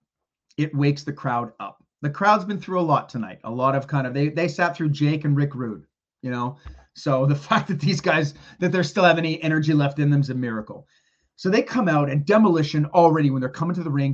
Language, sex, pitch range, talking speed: English, male, 135-175 Hz, 245 wpm